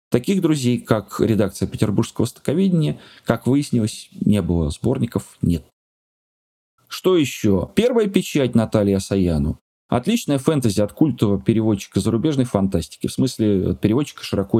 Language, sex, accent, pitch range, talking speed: Russian, male, native, 105-140 Hz, 125 wpm